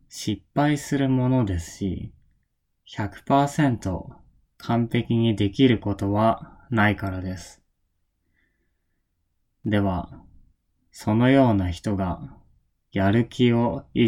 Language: Japanese